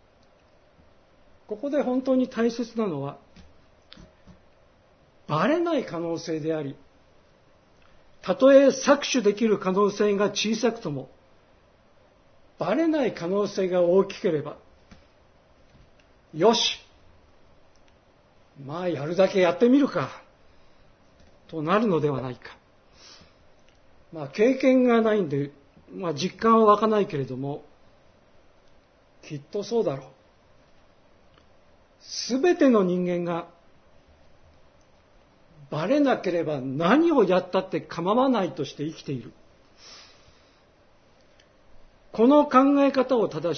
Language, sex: Japanese, male